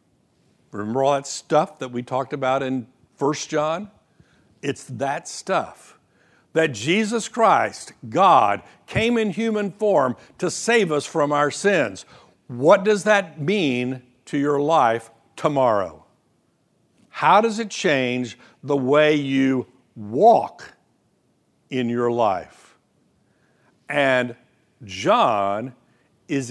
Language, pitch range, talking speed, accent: English, 125-170 Hz, 115 wpm, American